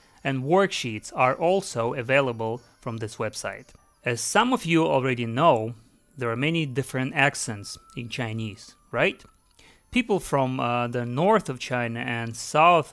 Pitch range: 120-155 Hz